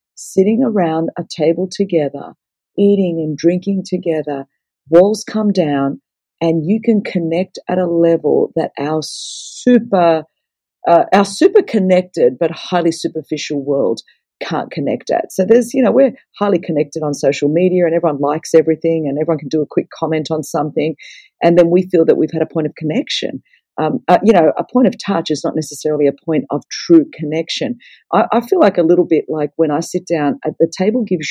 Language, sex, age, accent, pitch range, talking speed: English, female, 50-69, Australian, 155-195 Hz, 190 wpm